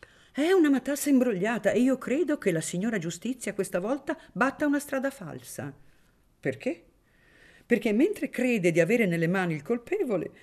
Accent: native